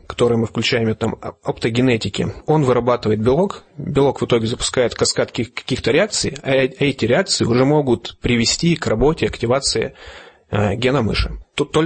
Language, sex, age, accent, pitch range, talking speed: Russian, male, 30-49, native, 115-145 Hz, 135 wpm